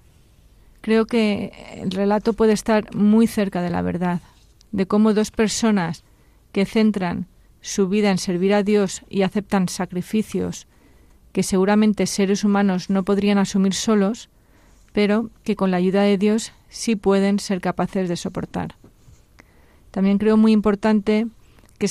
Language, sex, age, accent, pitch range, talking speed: Spanish, female, 40-59, Spanish, 185-215 Hz, 140 wpm